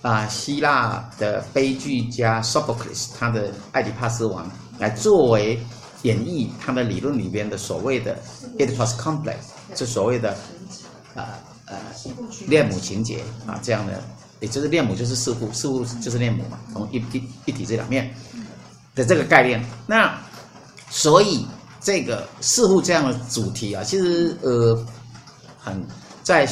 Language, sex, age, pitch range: Chinese, male, 50-69, 110-130 Hz